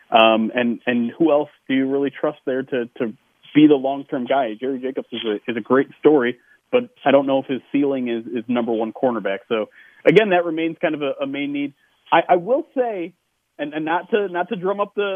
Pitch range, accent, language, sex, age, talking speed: 130-180 Hz, American, English, male, 30-49, 235 wpm